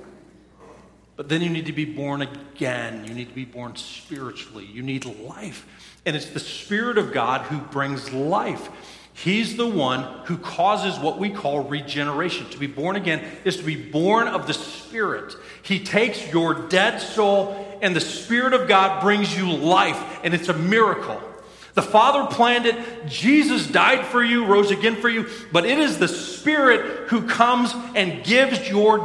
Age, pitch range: 40-59, 155-215 Hz